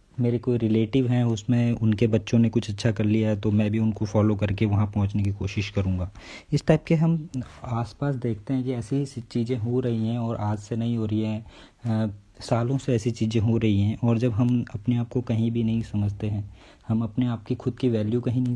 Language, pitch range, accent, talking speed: English, 110-130 Hz, Indian, 200 wpm